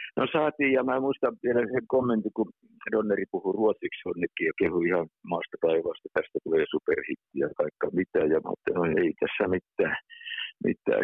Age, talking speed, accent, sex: 60-79, 170 wpm, native, male